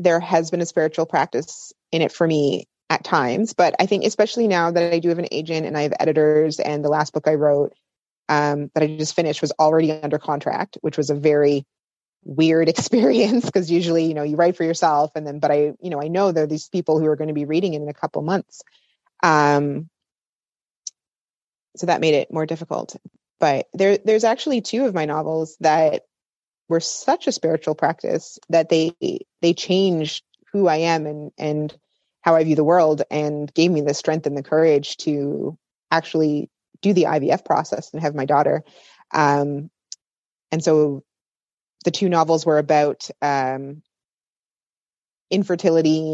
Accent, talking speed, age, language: American, 185 wpm, 30-49, English